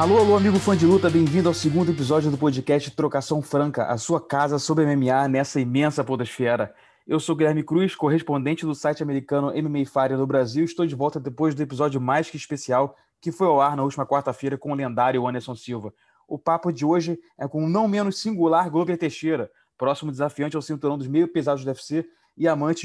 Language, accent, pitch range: English, Brazilian, 145-170 Hz